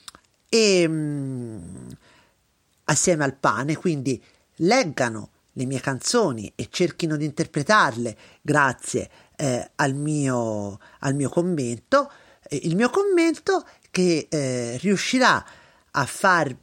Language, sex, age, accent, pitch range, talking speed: Italian, male, 40-59, native, 125-190 Hz, 95 wpm